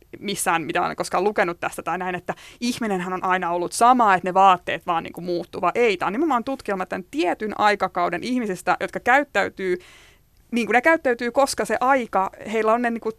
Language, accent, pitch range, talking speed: Finnish, native, 180-225 Hz, 185 wpm